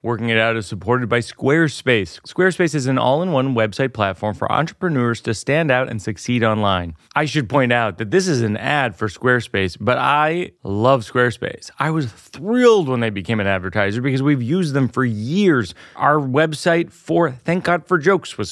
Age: 30-49